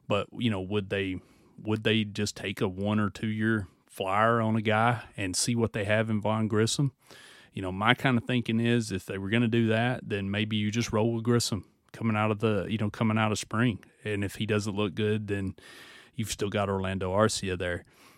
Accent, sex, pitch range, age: American, male, 100-115 Hz, 30-49